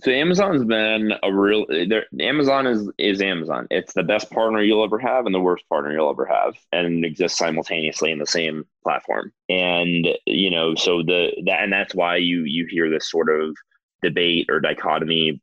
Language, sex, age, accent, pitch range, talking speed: English, male, 20-39, American, 80-95 Hz, 185 wpm